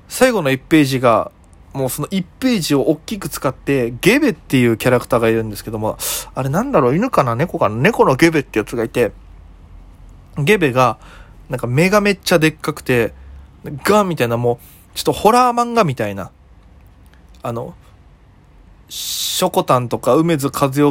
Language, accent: Japanese, native